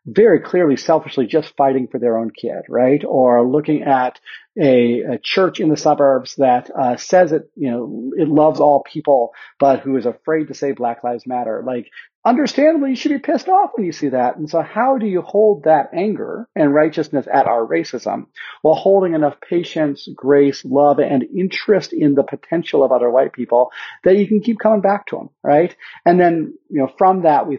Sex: male